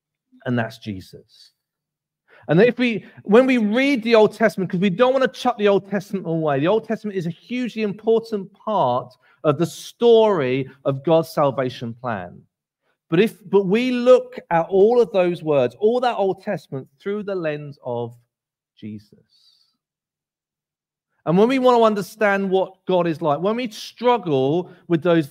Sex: male